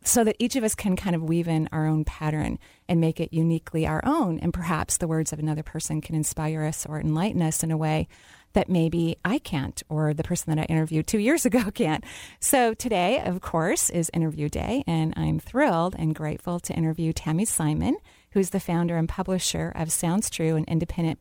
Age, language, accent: 30-49, English, American